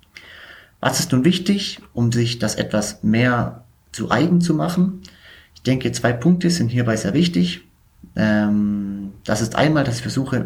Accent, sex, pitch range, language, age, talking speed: German, male, 105-140 Hz, German, 30-49, 155 wpm